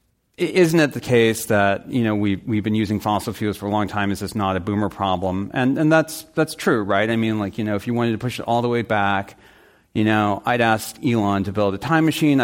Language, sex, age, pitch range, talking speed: English, male, 40-59, 105-140 Hz, 265 wpm